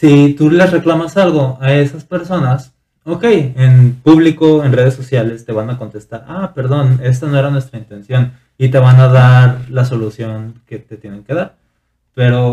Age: 20-39